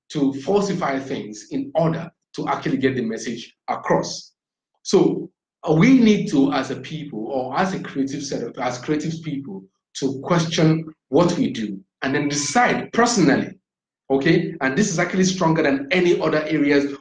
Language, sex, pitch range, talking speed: English, male, 135-180 Hz, 160 wpm